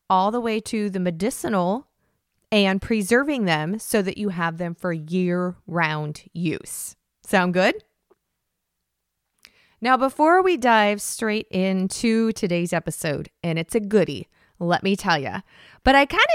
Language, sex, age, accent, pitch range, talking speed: English, female, 20-39, American, 180-250 Hz, 140 wpm